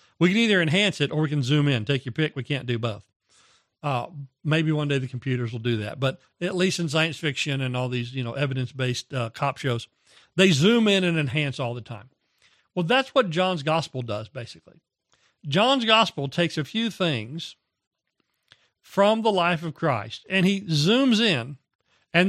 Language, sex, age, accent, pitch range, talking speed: English, male, 40-59, American, 130-180 Hz, 195 wpm